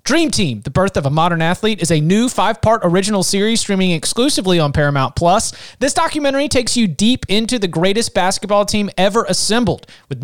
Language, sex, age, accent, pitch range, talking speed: English, male, 30-49, American, 165-215 Hz, 180 wpm